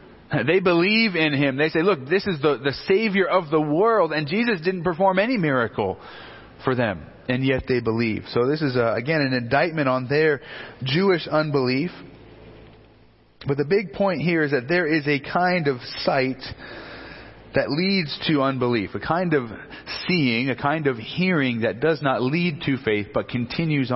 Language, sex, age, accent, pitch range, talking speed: English, male, 30-49, American, 115-155 Hz, 180 wpm